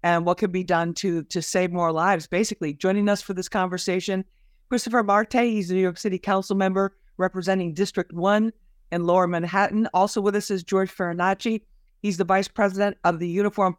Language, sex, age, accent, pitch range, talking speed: English, female, 50-69, American, 185-215 Hz, 190 wpm